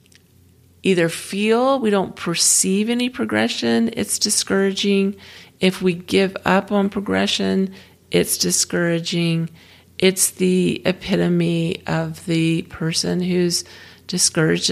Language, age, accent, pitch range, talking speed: English, 40-59, American, 160-200 Hz, 100 wpm